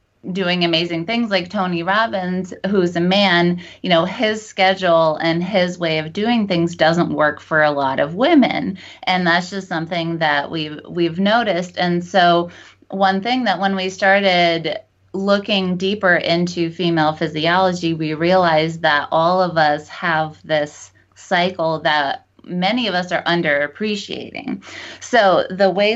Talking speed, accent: 150 wpm, American